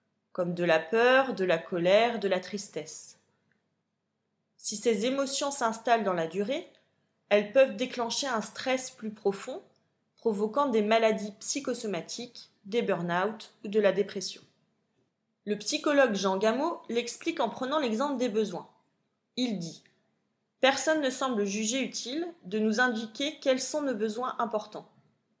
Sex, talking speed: female, 140 wpm